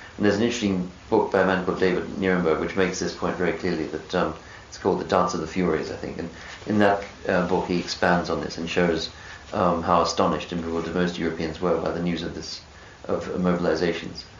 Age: 40-59